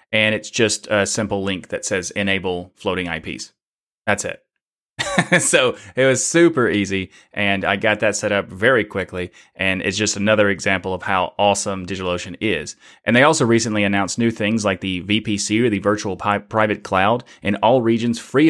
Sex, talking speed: male, 180 wpm